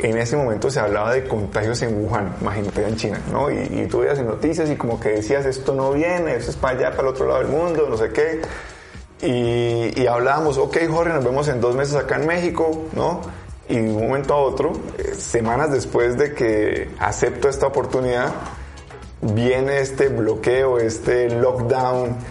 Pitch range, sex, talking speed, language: 115-145 Hz, male, 190 wpm, Spanish